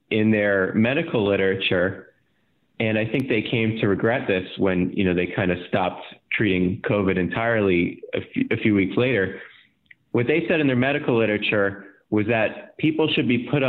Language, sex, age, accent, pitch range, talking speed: English, male, 30-49, American, 95-120 Hz, 180 wpm